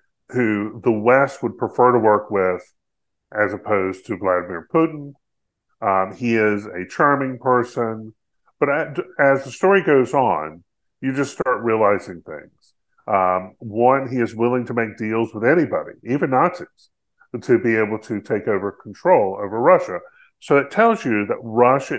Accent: American